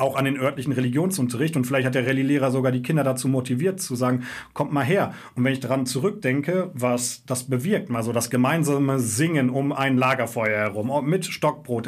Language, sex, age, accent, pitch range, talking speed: German, male, 40-59, German, 125-155 Hz, 190 wpm